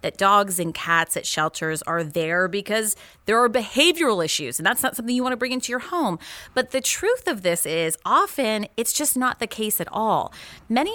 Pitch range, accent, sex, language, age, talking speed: 175-245 Hz, American, female, English, 30-49, 215 wpm